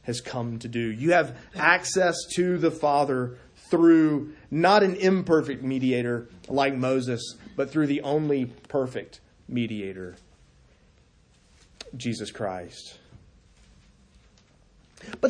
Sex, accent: male, American